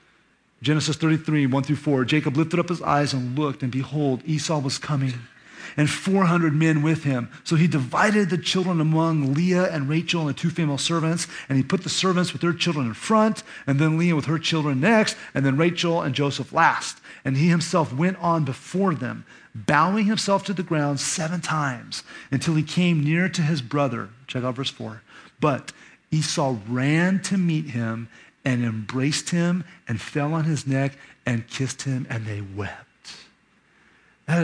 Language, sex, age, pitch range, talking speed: English, male, 30-49, 135-170 Hz, 180 wpm